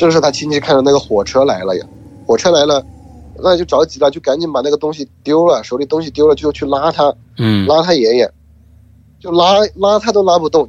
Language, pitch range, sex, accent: Chinese, 115-170 Hz, male, native